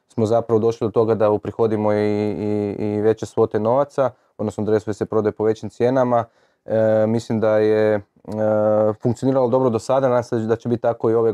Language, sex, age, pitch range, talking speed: Croatian, male, 20-39, 105-115 Hz, 190 wpm